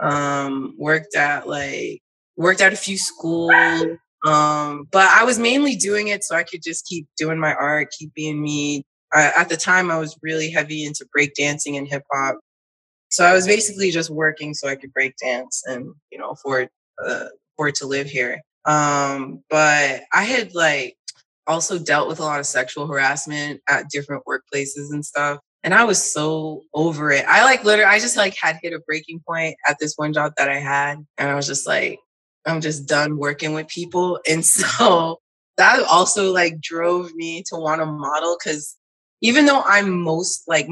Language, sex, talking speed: English, female, 190 wpm